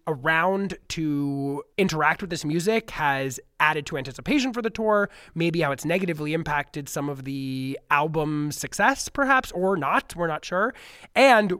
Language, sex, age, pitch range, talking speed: English, male, 20-39, 145-180 Hz, 155 wpm